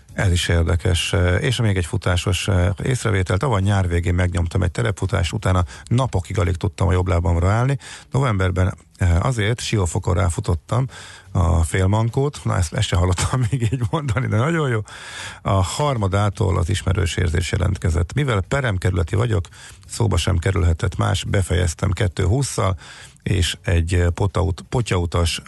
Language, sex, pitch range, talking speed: Hungarian, male, 90-105 Hz, 135 wpm